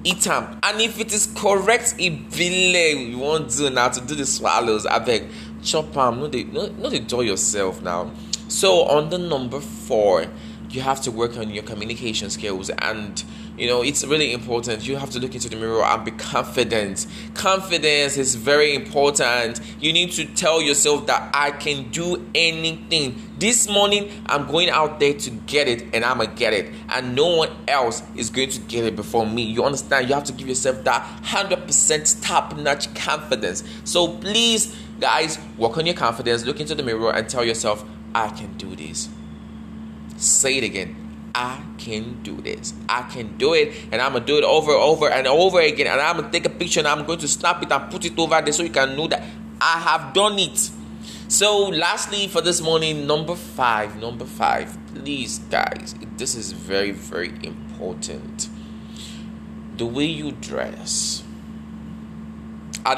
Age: 20-39